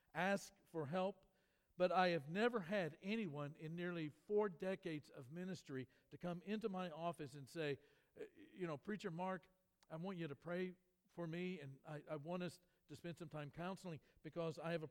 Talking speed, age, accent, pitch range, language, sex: 190 wpm, 60-79, American, 155-190 Hz, English, male